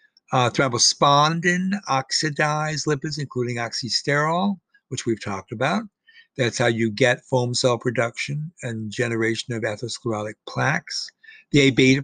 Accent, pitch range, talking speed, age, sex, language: American, 120-150 Hz, 125 wpm, 60-79, male, English